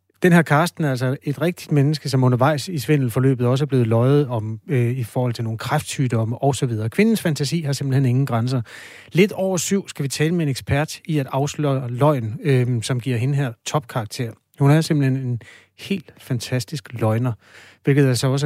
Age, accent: 30-49, native